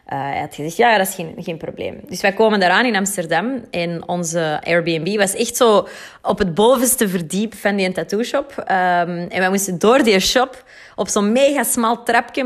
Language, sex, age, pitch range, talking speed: Dutch, female, 20-39, 185-235 Hz, 205 wpm